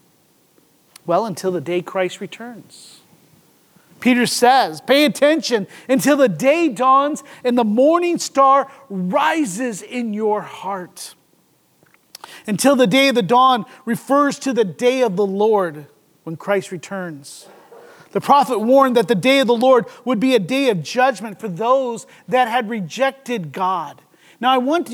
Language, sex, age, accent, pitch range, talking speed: English, male, 40-59, American, 210-270 Hz, 150 wpm